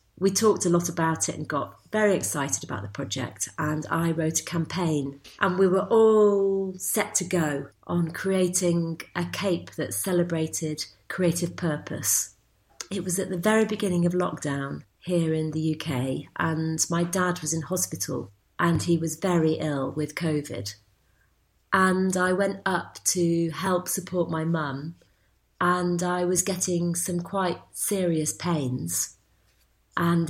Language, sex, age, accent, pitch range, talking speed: English, female, 40-59, British, 155-180 Hz, 150 wpm